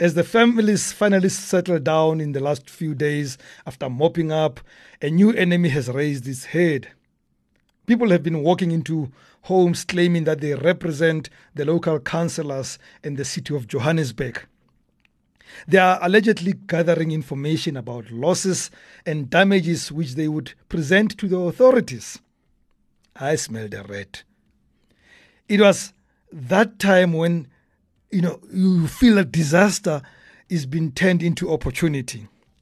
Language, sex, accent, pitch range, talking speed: English, male, South African, 145-190 Hz, 140 wpm